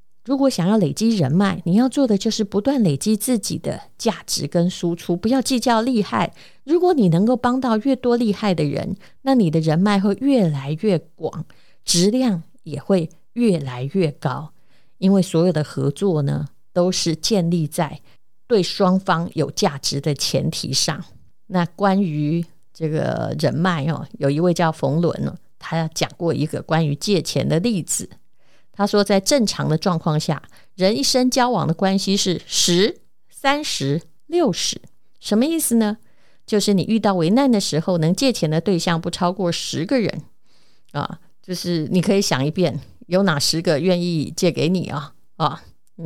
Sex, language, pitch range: female, Chinese, 160-220 Hz